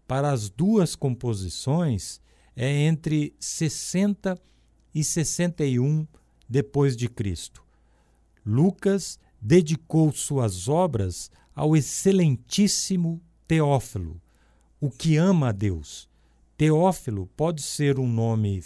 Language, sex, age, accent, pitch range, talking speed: Portuguese, male, 50-69, Brazilian, 110-165 Hz, 85 wpm